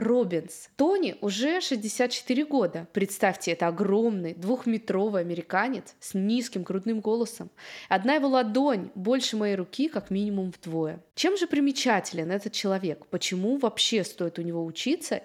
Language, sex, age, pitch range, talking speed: Russian, female, 20-39, 195-270 Hz, 135 wpm